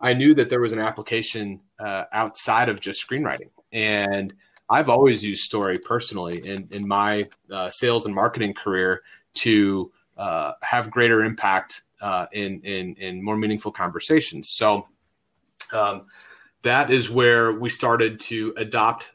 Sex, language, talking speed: male, English, 145 wpm